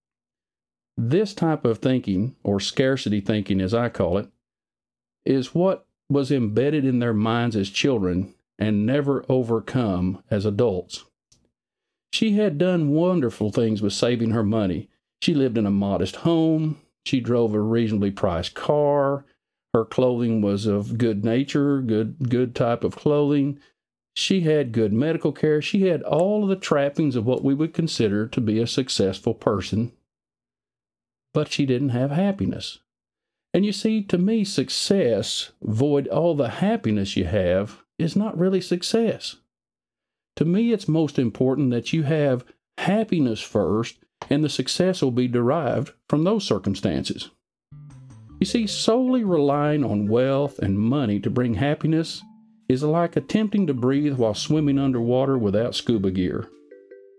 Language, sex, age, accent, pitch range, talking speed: English, male, 50-69, American, 115-160 Hz, 145 wpm